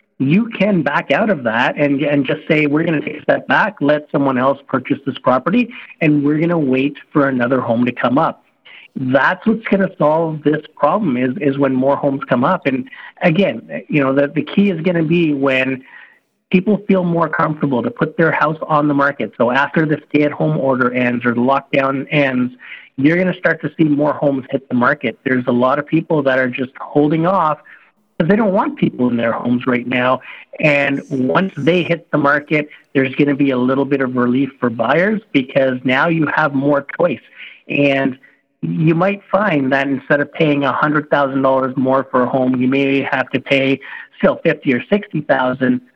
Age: 50-69